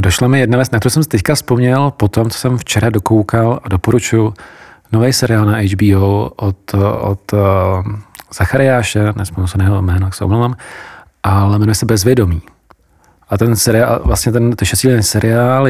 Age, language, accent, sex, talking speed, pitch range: 40-59, Czech, native, male, 155 wpm, 100-115 Hz